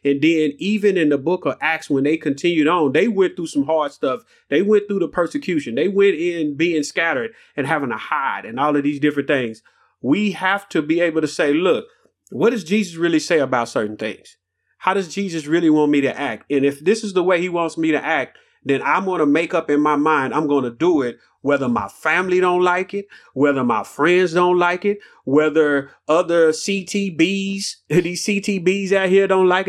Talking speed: 220 wpm